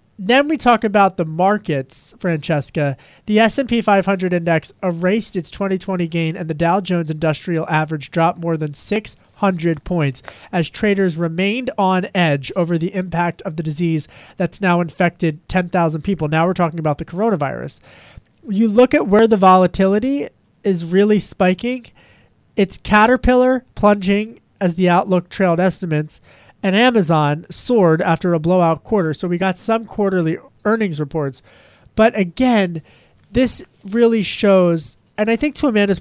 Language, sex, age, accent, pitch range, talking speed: English, male, 30-49, American, 165-205 Hz, 150 wpm